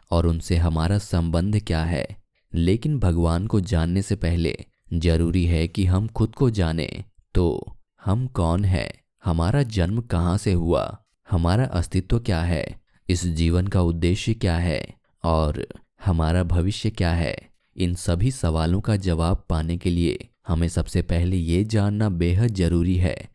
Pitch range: 85-100 Hz